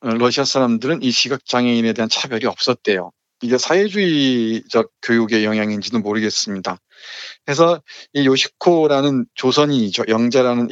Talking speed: 100 wpm